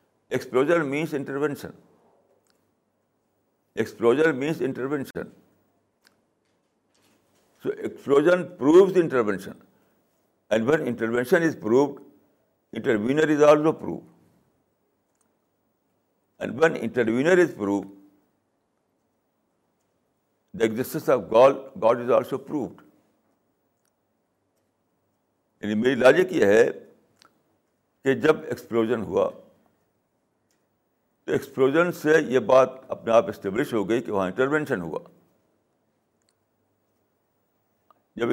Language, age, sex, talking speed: Urdu, 60-79, male, 80 wpm